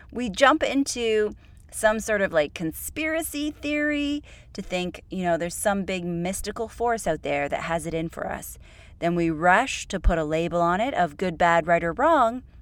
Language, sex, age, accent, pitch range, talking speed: English, female, 30-49, American, 165-240 Hz, 195 wpm